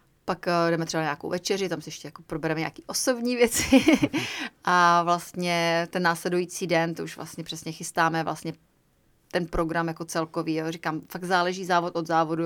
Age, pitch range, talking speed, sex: 30-49, 160-175 Hz, 175 wpm, female